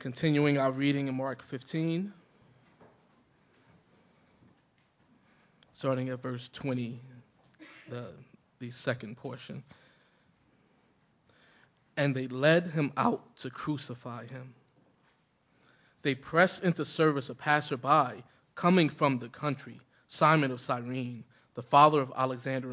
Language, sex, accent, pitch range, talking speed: English, male, American, 125-150 Hz, 105 wpm